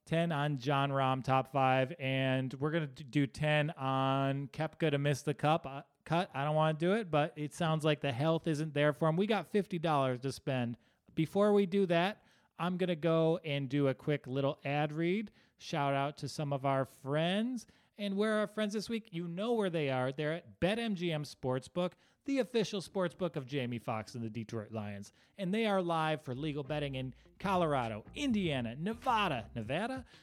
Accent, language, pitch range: American, English, 135-185 Hz